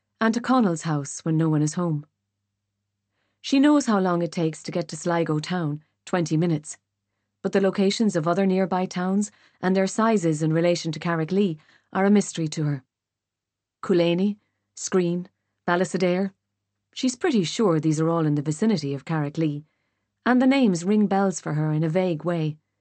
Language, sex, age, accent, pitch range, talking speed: English, female, 40-59, Irish, 140-185 Hz, 180 wpm